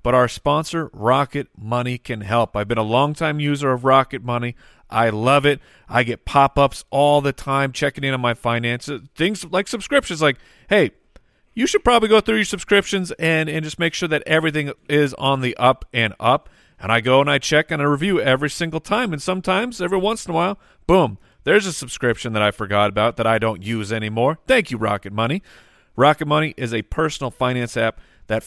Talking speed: 205 wpm